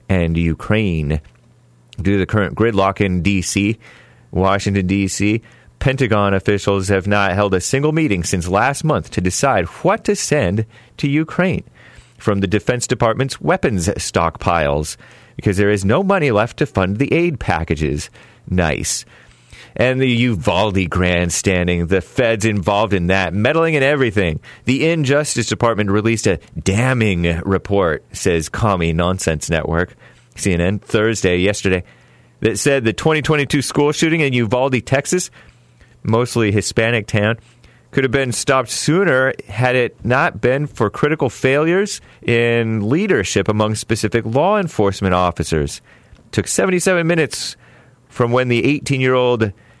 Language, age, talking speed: English, 30-49, 135 wpm